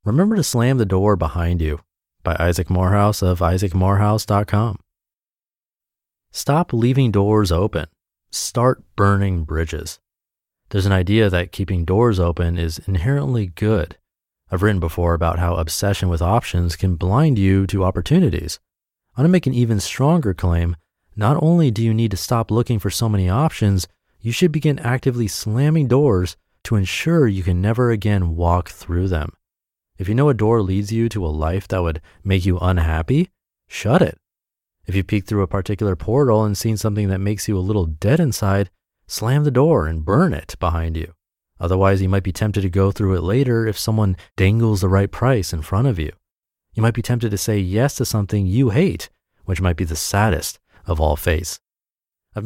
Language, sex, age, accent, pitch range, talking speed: English, male, 30-49, American, 90-115 Hz, 180 wpm